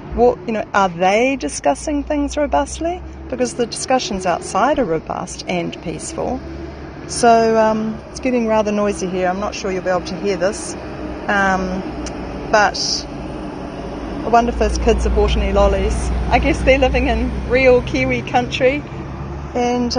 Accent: Australian